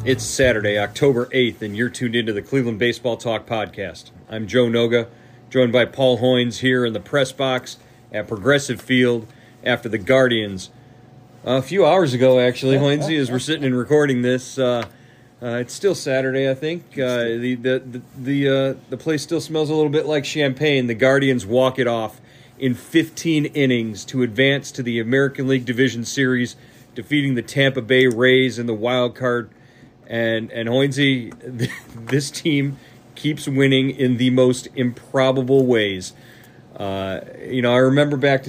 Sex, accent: male, American